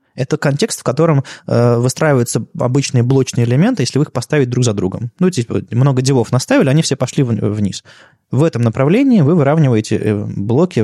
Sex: male